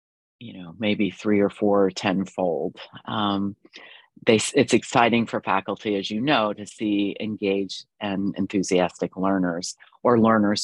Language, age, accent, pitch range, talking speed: English, 40-59, American, 100-125 Hz, 135 wpm